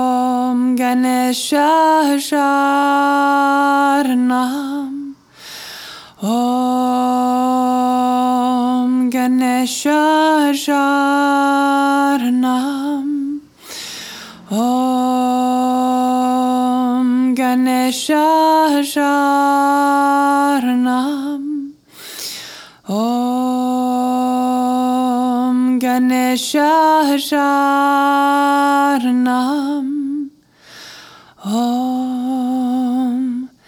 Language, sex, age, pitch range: English, female, 20-39, 250-280 Hz